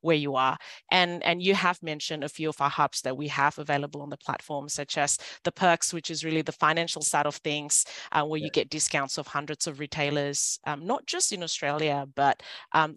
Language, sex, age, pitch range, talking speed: English, female, 30-49, 150-170 Hz, 220 wpm